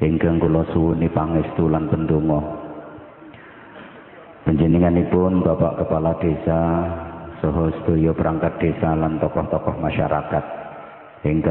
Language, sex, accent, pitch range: English, male, Indonesian, 80-90 Hz